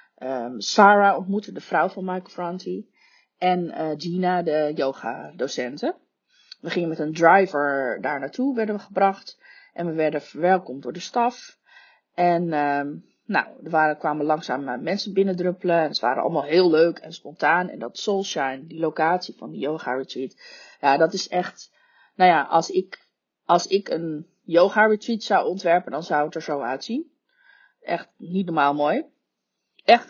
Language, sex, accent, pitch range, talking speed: Dutch, female, Dutch, 150-195 Hz, 160 wpm